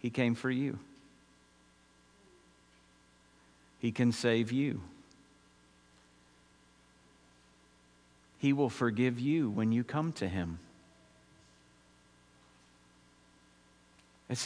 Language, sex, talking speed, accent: English, male, 75 wpm, American